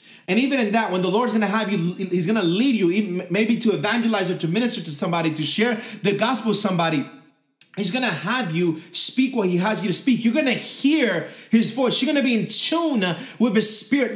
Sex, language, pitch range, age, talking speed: male, English, 200-255 Hz, 30-49, 240 wpm